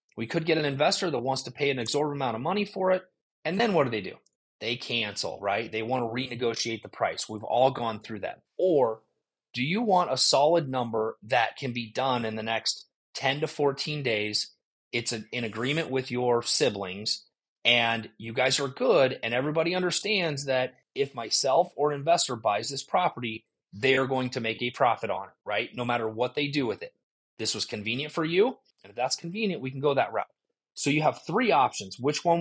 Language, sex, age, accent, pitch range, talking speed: English, male, 30-49, American, 115-145 Hz, 205 wpm